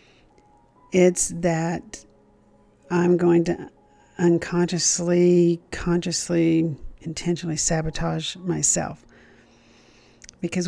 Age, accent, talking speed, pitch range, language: 50-69, American, 60 wpm, 165-190 Hz, English